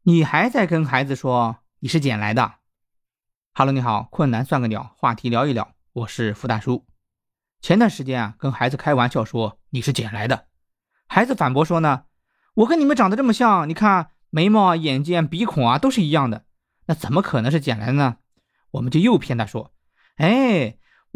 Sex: male